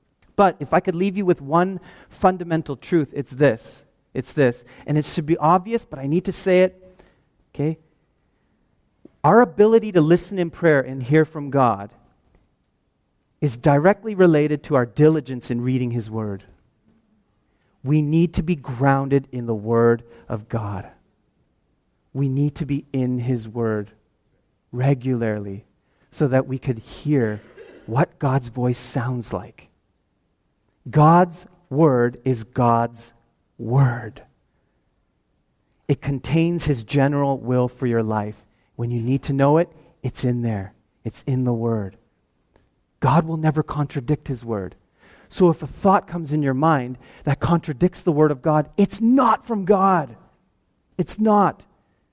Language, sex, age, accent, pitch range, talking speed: English, male, 30-49, American, 120-175 Hz, 145 wpm